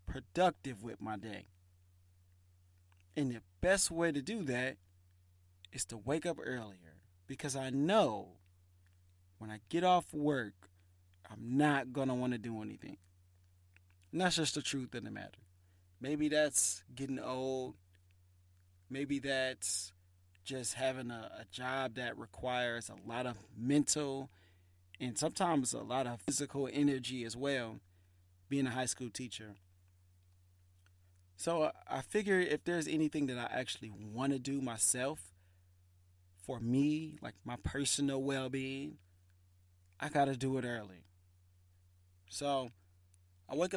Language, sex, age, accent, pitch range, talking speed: English, male, 30-49, American, 90-135 Hz, 135 wpm